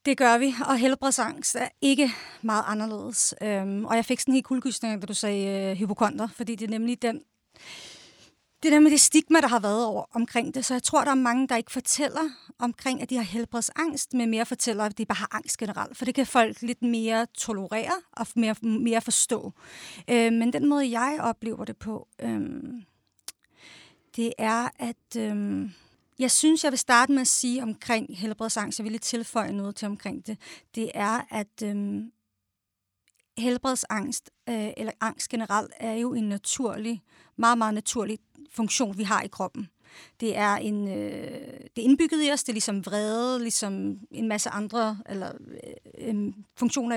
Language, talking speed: Danish, 185 wpm